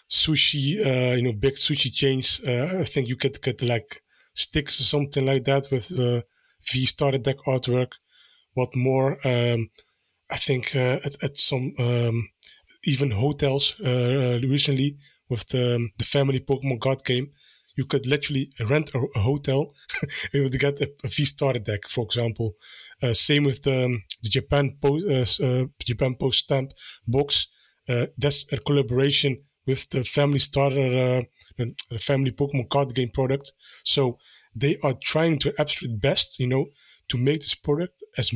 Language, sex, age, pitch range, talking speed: English, male, 20-39, 125-140 Hz, 160 wpm